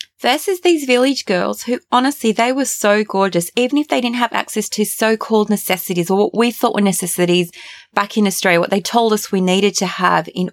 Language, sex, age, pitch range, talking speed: English, female, 20-39, 190-245 Hz, 210 wpm